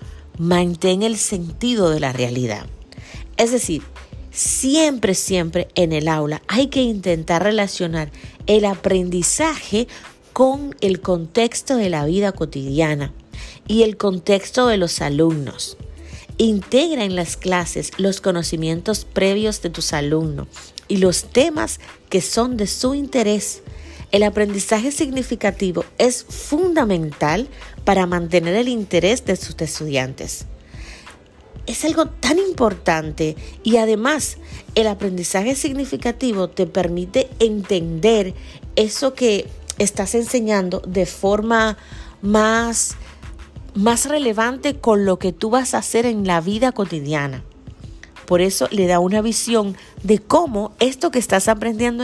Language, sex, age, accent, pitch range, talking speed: Spanish, female, 40-59, American, 175-235 Hz, 120 wpm